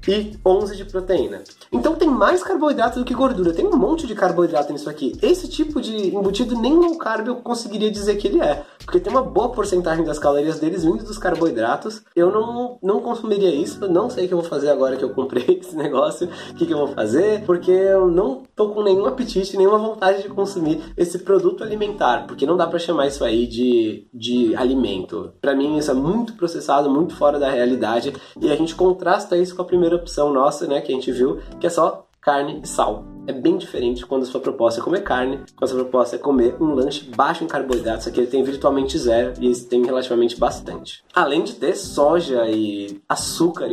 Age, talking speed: 20-39, 215 wpm